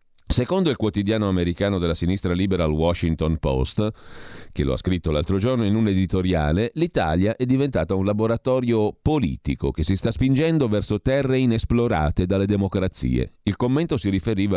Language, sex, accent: Italian, male, native